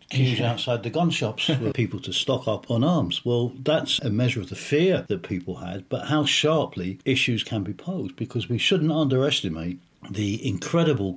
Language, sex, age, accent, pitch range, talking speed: English, male, 50-69, British, 100-135 Hz, 190 wpm